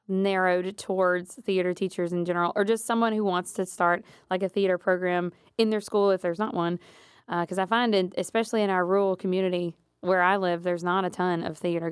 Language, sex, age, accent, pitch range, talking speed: English, female, 20-39, American, 175-205 Hz, 215 wpm